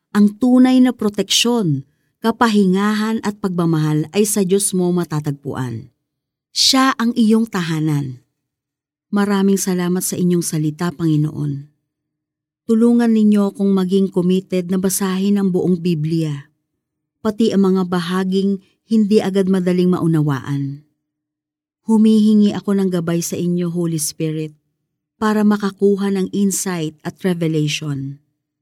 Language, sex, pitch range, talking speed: Filipino, female, 150-205 Hz, 115 wpm